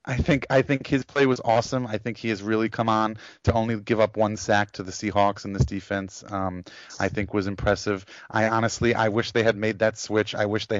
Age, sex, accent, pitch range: 30-49, male, American, 100-115 Hz